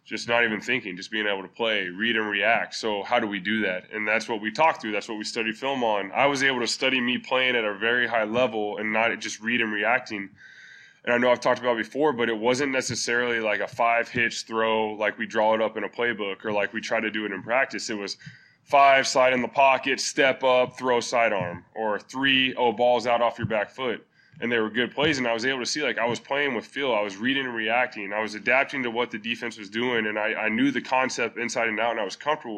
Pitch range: 110-130 Hz